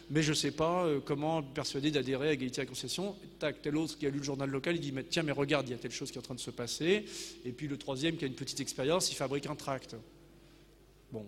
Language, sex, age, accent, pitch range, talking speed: French, male, 40-59, French, 135-170 Hz, 295 wpm